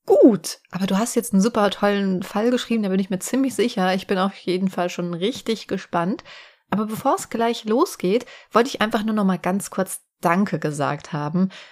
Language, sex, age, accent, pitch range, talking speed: German, female, 30-49, German, 185-225 Hz, 205 wpm